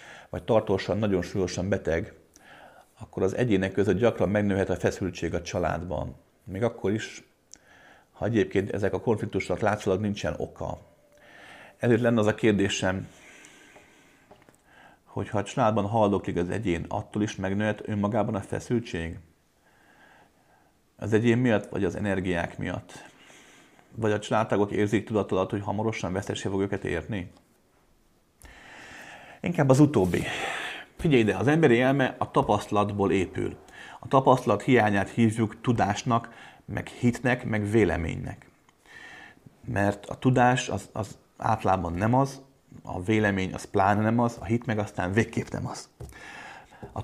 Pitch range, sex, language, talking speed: 95-120 Hz, male, Hungarian, 135 wpm